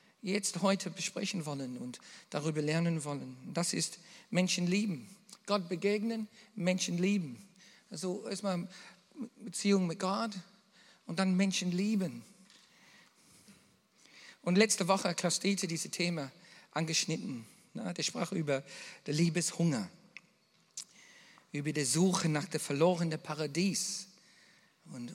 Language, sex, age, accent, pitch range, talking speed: German, male, 50-69, German, 165-200 Hz, 110 wpm